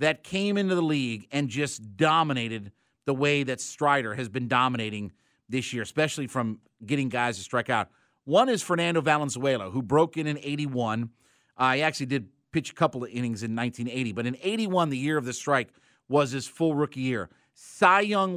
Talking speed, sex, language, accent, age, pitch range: 195 wpm, male, English, American, 50-69, 130-175 Hz